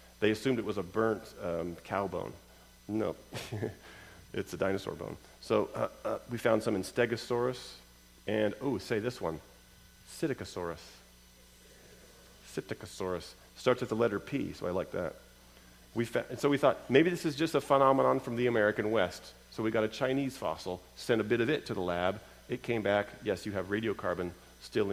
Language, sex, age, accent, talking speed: English, male, 40-59, American, 185 wpm